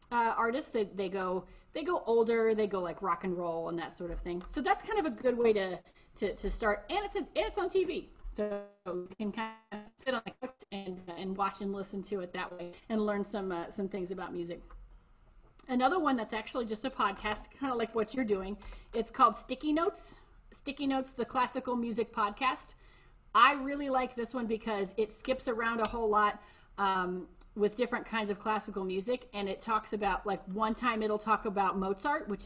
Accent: American